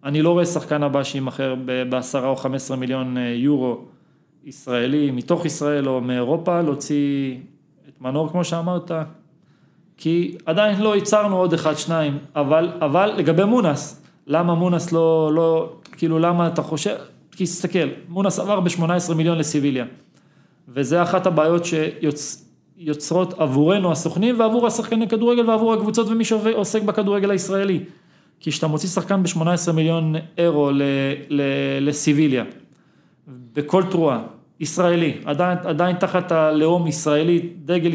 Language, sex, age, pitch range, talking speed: Hebrew, male, 30-49, 150-175 Hz, 130 wpm